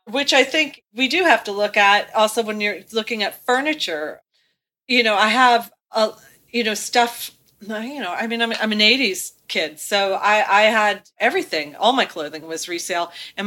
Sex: female